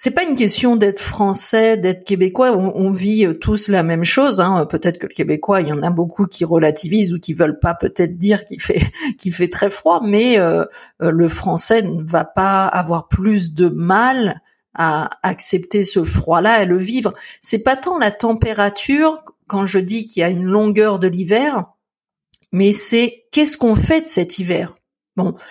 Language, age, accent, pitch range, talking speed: French, 50-69, French, 180-225 Hz, 190 wpm